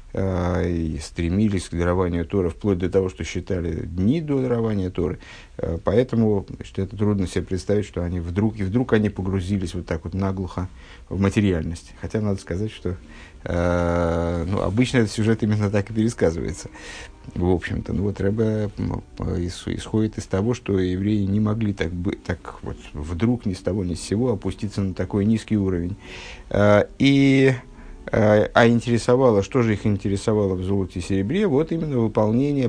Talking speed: 165 wpm